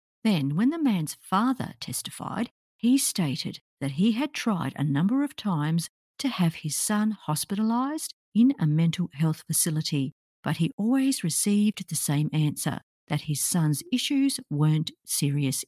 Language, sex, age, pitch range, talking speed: English, female, 50-69, 155-230 Hz, 150 wpm